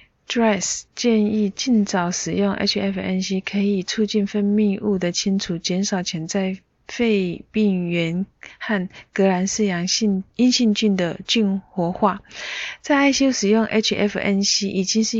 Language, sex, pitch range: Chinese, female, 190-220 Hz